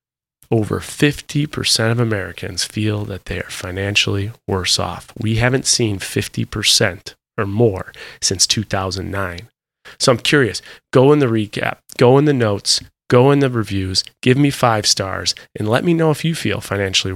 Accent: American